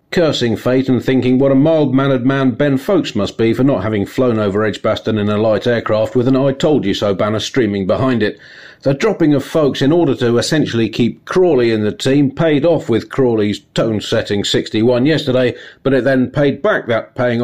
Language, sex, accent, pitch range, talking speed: English, male, British, 115-135 Hz, 205 wpm